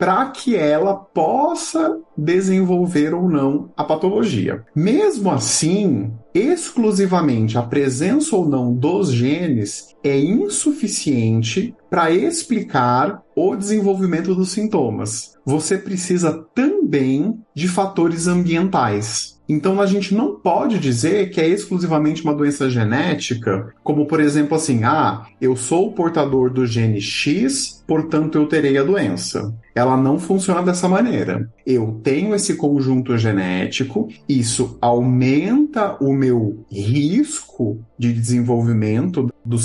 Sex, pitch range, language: male, 120-180 Hz, Portuguese